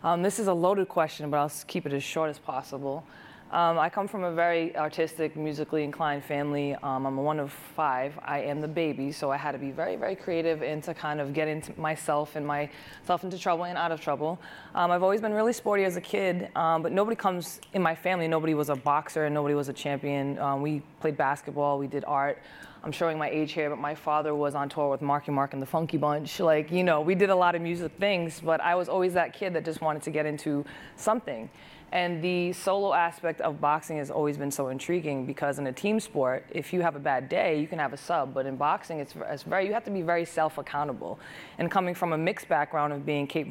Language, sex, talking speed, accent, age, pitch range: English, female, 245 wpm, American, 20-39, 145-170 Hz